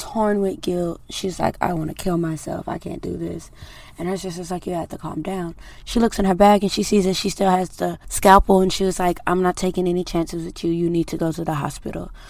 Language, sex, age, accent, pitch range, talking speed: English, female, 20-39, American, 155-185 Hz, 270 wpm